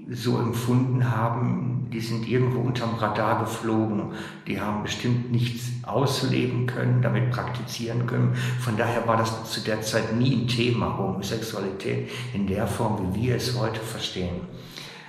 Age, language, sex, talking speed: 60-79, German, male, 145 wpm